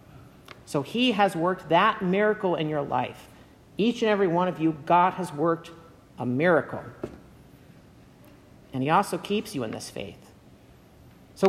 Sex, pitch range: male, 165-225 Hz